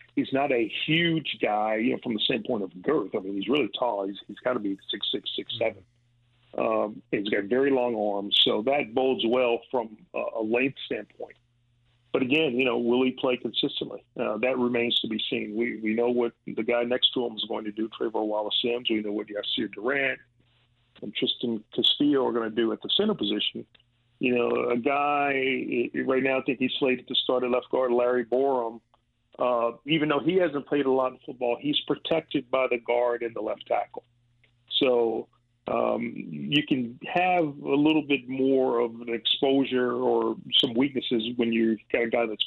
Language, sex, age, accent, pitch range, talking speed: English, male, 40-59, American, 115-130 Hz, 205 wpm